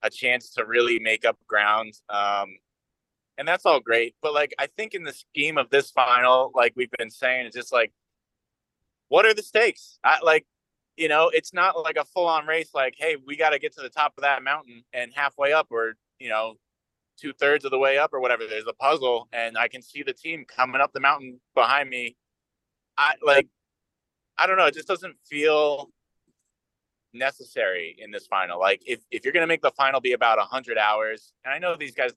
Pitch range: 115-160 Hz